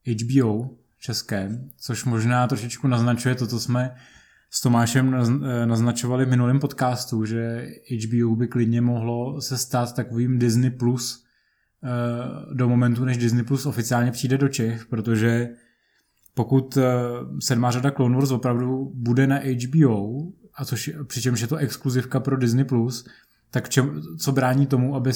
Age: 20-39